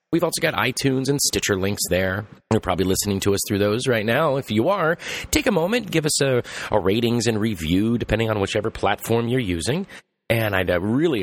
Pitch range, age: 100-150 Hz, 30-49